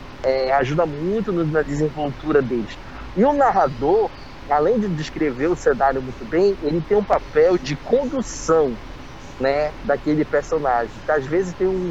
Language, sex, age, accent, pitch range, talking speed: Portuguese, male, 20-39, Brazilian, 150-185 Hz, 145 wpm